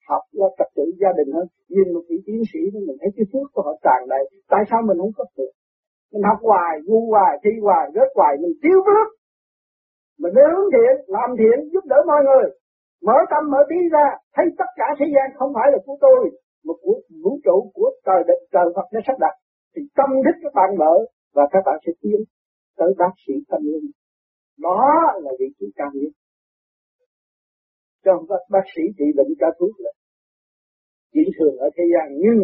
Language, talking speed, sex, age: Vietnamese, 205 wpm, male, 50-69